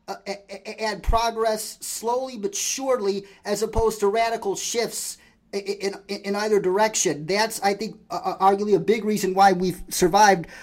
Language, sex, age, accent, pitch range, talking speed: English, male, 30-49, American, 190-220 Hz, 150 wpm